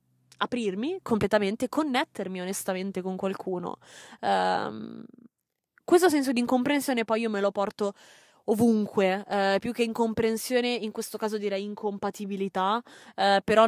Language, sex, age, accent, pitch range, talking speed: Italian, female, 20-39, native, 195-230 Hz, 110 wpm